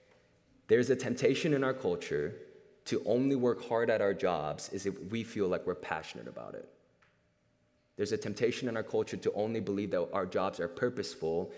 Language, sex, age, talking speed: English, male, 20-39, 185 wpm